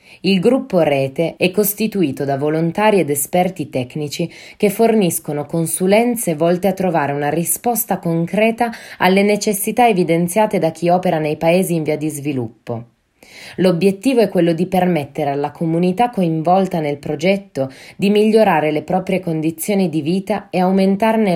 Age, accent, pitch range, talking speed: 20-39, native, 155-195 Hz, 140 wpm